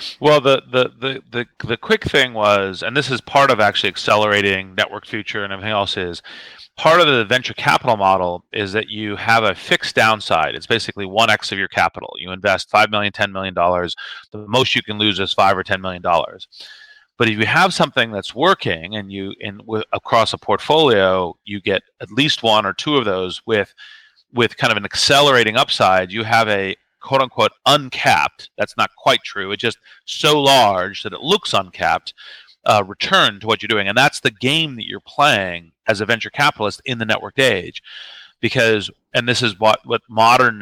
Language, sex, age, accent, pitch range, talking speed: English, male, 30-49, American, 95-120 Hz, 200 wpm